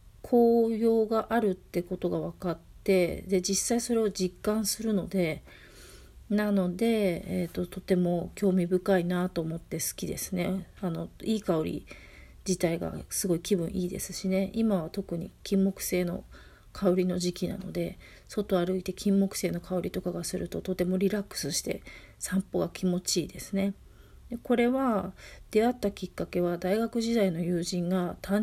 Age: 40-59